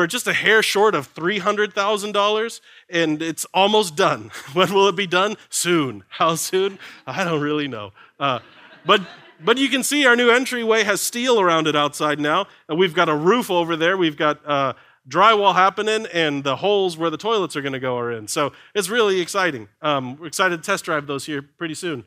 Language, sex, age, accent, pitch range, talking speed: English, male, 30-49, American, 145-195 Hz, 205 wpm